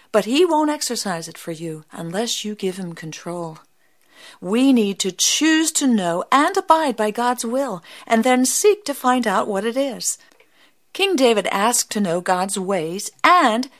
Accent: American